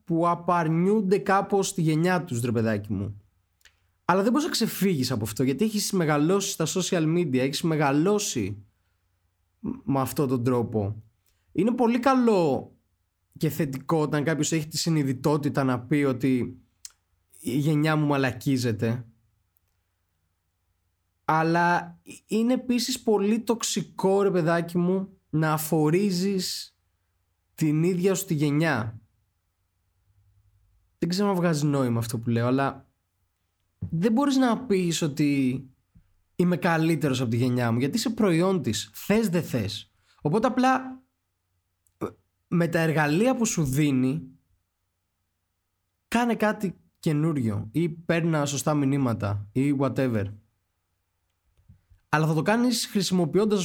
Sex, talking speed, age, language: male, 120 wpm, 20-39, Greek